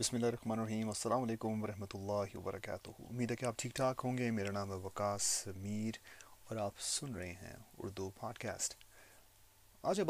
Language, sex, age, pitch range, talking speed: Urdu, male, 30-49, 100-120 Hz, 185 wpm